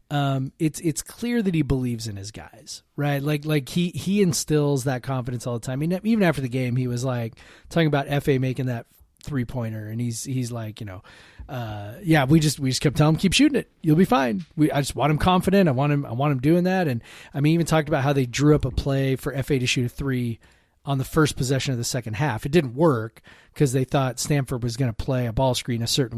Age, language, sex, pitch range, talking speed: 30-49, English, male, 125-155 Hz, 255 wpm